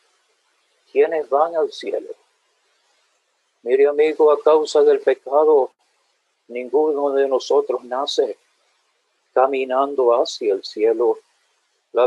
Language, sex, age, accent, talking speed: English, male, 50-69, Indian, 95 wpm